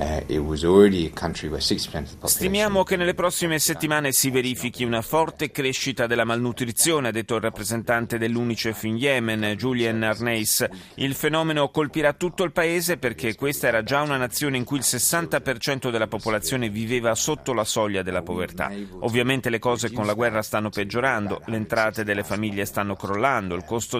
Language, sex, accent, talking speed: Italian, male, native, 155 wpm